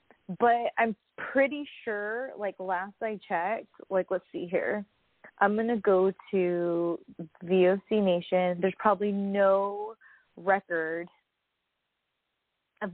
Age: 20-39